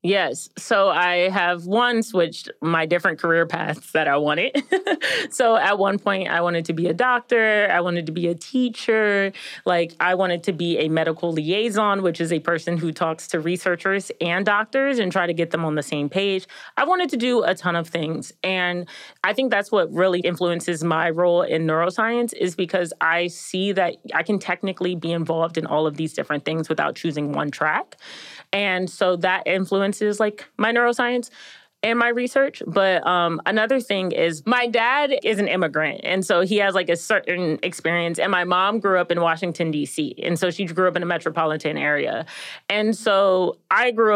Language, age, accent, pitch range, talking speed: English, 30-49, American, 170-215 Hz, 195 wpm